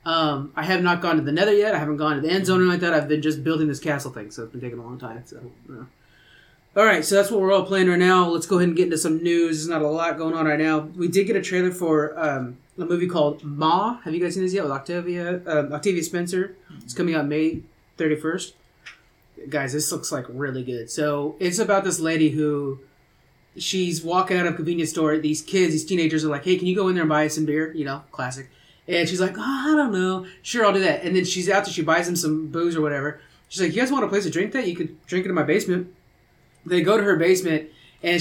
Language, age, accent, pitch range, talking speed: English, 30-49, American, 155-185 Hz, 270 wpm